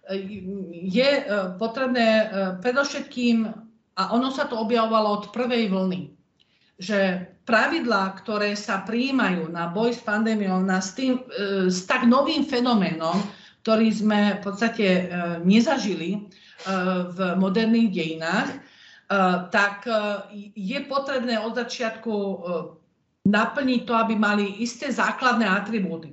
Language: Slovak